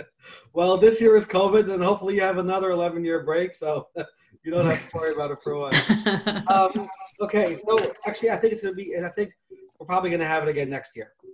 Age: 30-49